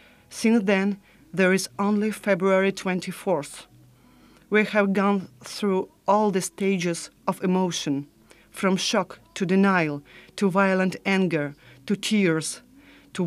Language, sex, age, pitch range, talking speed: English, female, 40-59, 165-200 Hz, 120 wpm